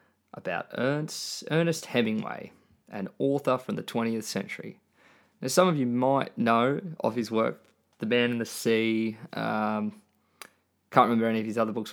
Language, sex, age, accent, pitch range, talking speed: English, male, 20-39, Australian, 110-130 Hz, 155 wpm